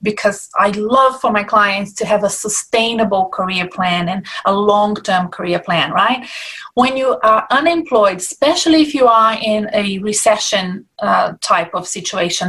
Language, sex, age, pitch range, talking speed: English, female, 30-49, 195-230 Hz, 165 wpm